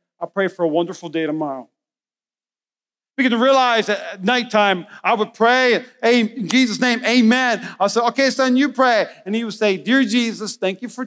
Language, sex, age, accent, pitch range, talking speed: English, male, 40-59, American, 190-265 Hz, 195 wpm